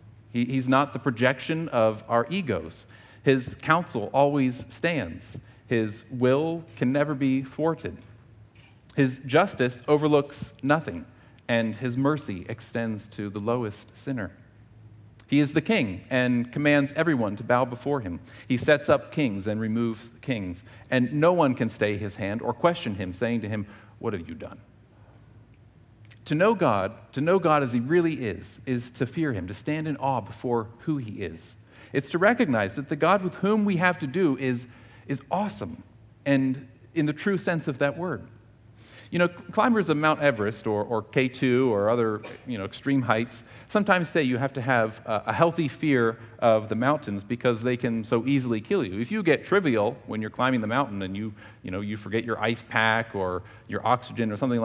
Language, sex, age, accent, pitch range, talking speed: English, male, 40-59, American, 110-140 Hz, 180 wpm